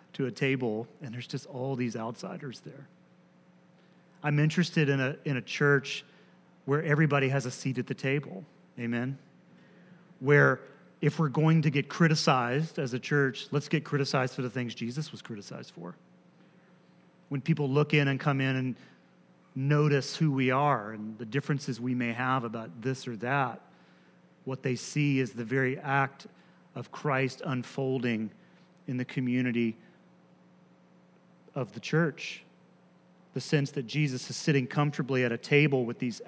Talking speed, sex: 160 wpm, male